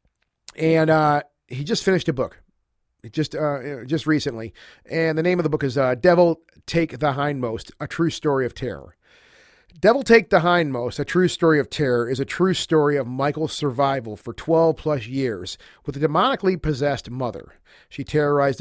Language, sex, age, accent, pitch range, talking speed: English, male, 40-59, American, 125-155 Hz, 175 wpm